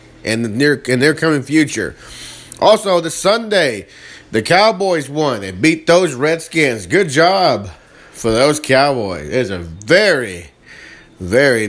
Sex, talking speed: male, 135 wpm